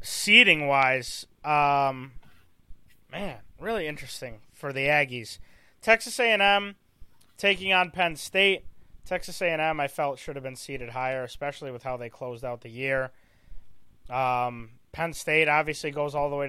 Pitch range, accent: 125-180 Hz, American